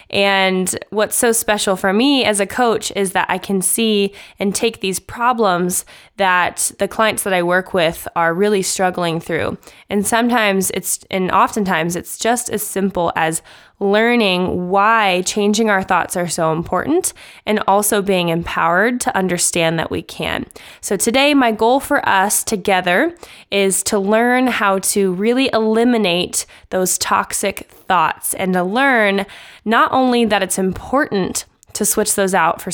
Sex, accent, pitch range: female, American, 185-225 Hz